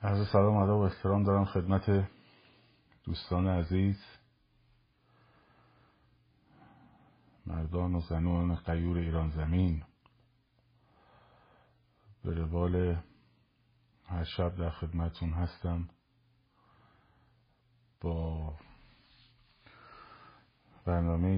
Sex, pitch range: male, 85-120 Hz